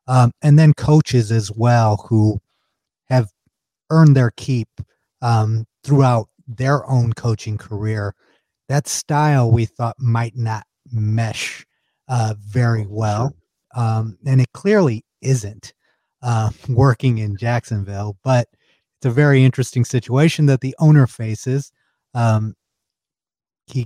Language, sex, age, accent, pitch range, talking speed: English, male, 30-49, American, 105-130 Hz, 120 wpm